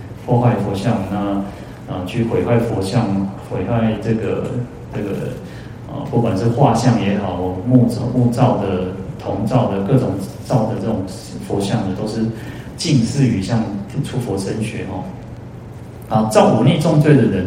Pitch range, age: 105-125 Hz, 30-49